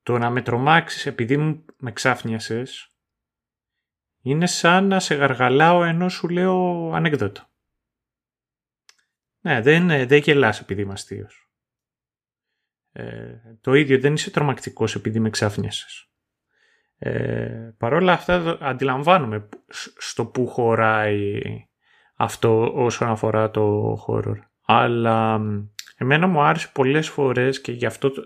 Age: 30-49